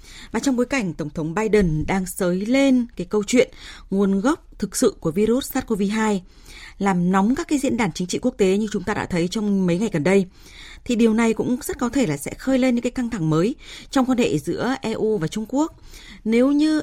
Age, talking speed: 20-39, 235 wpm